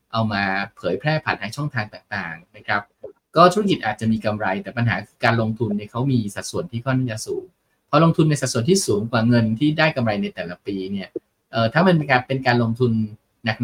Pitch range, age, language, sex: 110-140 Hz, 20-39, Thai, male